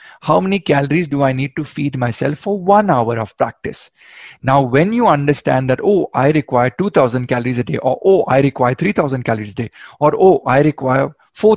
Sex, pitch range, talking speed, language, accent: male, 130-155 Hz, 215 wpm, Hindi, native